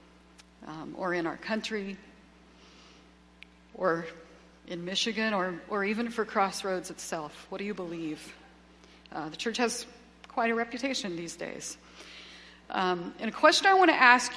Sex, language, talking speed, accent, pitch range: female, English, 145 wpm, American, 175-235 Hz